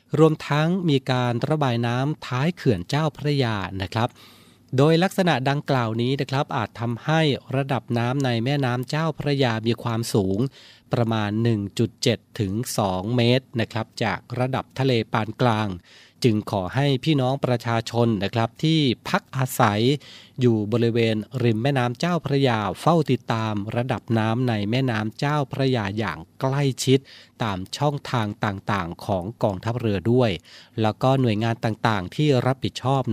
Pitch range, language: 110-140 Hz, Thai